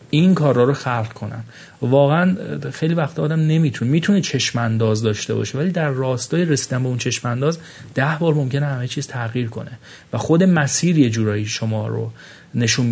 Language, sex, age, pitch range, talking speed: English, male, 30-49, 115-150 Hz, 165 wpm